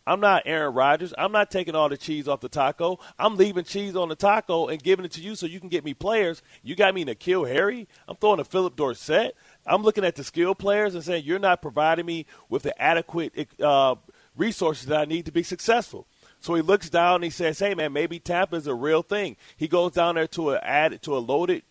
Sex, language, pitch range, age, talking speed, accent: male, English, 140-175 Hz, 30-49, 245 wpm, American